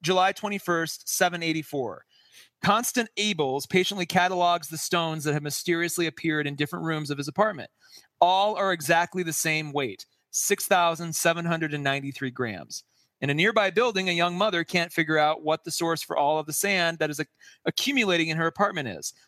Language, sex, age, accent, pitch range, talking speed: English, male, 30-49, American, 155-195 Hz, 160 wpm